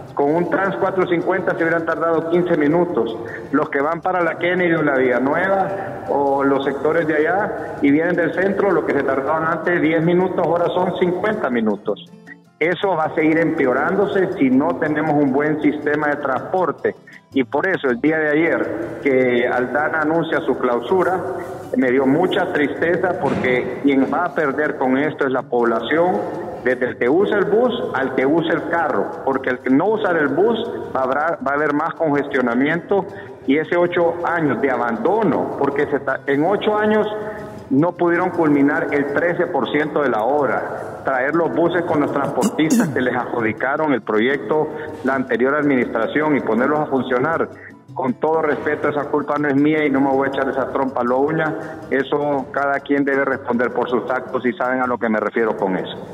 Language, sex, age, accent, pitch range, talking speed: Spanish, male, 50-69, Mexican, 135-175 Hz, 185 wpm